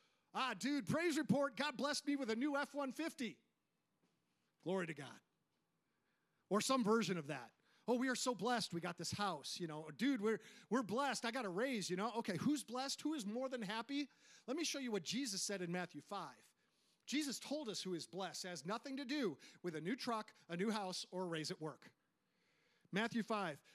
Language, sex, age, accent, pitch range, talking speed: English, male, 40-59, American, 165-230 Hz, 210 wpm